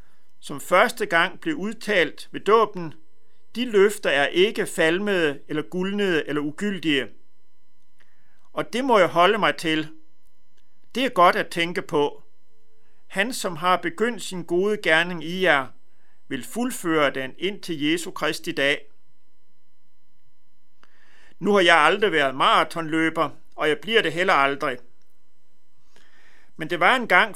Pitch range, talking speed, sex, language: 155-195 Hz, 140 wpm, male, Danish